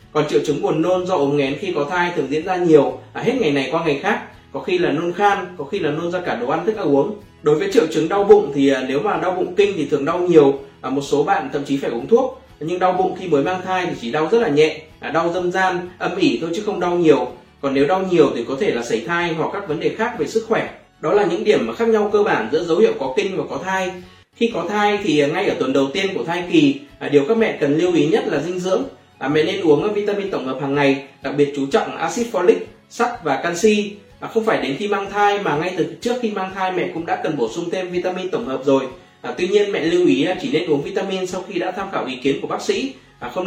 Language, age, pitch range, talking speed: Vietnamese, 20-39, 145-210 Hz, 275 wpm